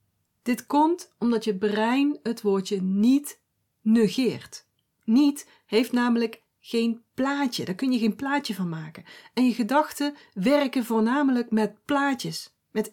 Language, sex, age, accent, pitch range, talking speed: Dutch, female, 40-59, Dutch, 215-285 Hz, 135 wpm